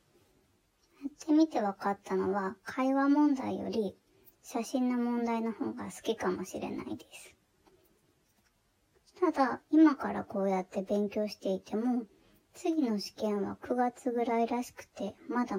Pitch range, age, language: 200-275 Hz, 20-39, Japanese